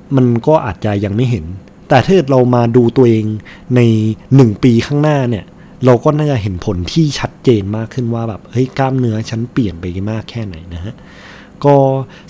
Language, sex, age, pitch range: Thai, male, 20-39, 115-150 Hz